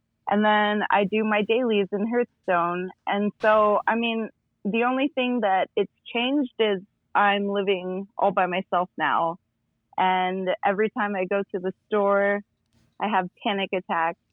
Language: English